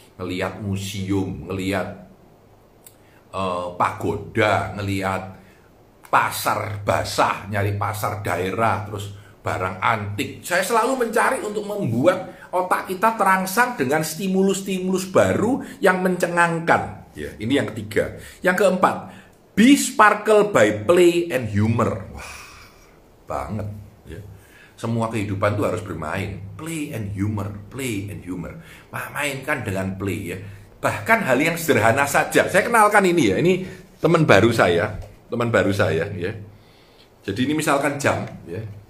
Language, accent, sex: Indonesian, native, male